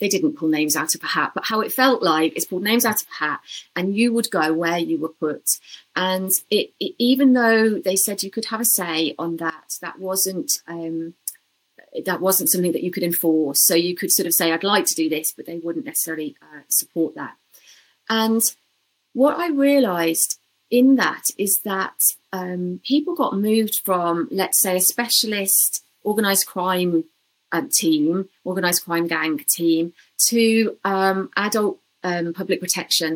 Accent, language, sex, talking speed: British, English, female, 180 wpm